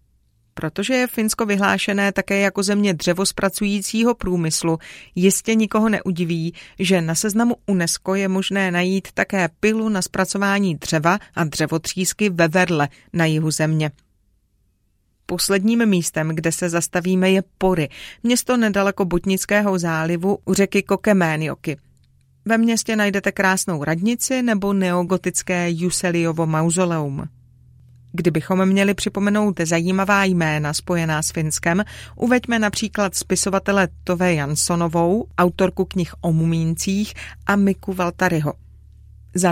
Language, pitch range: Czech, 165-200 Hz